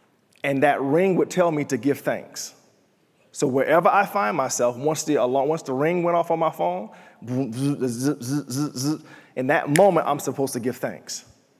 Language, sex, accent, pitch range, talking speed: English, male, American, 130-160 Hz, 165 wpm